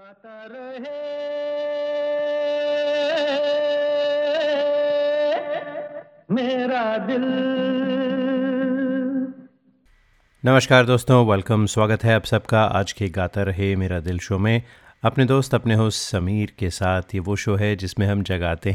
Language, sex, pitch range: English, male, 95-125 Hz